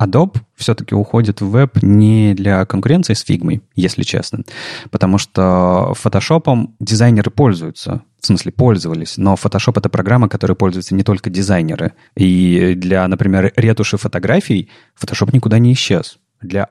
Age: 30-49